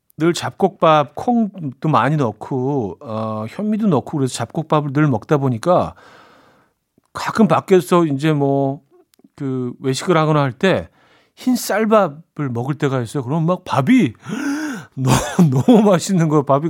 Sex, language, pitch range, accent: male, Korean, 130-175 Hz, native